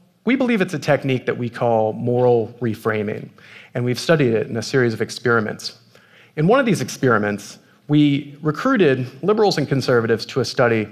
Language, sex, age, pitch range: Korean, male, 30-49, 115-140 Hz